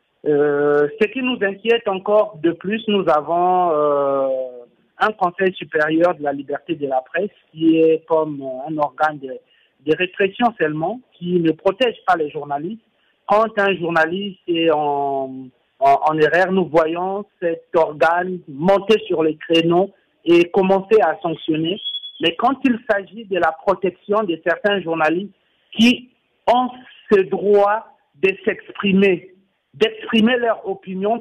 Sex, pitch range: male, 155-200 Hz